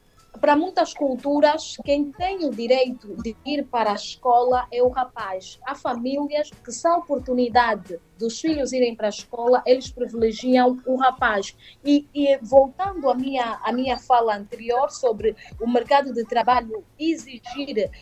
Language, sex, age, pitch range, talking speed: Portuguese, female, 20-39, 225-280 Hz, 155 wpm